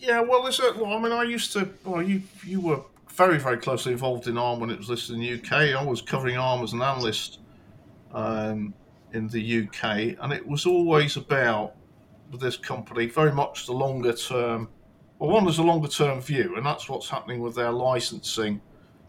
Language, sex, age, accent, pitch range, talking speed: English, male, 40-59, British, 110-140 Hz, 195 wpm